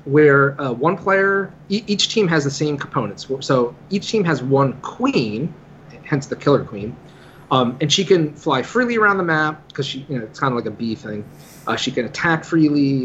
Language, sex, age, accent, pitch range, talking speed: English, male, 30-49, American, 130-160 Hz, 210 wpm